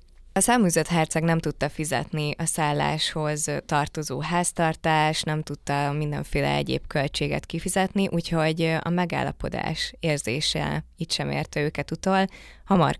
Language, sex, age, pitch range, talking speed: Hungarian, female, 20-39, 130-165 Hz, 120 wpm